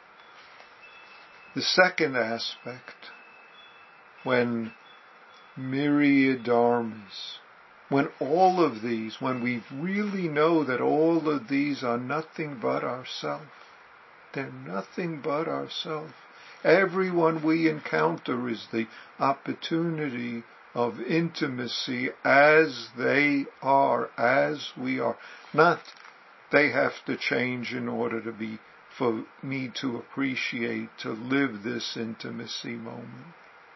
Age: 50-69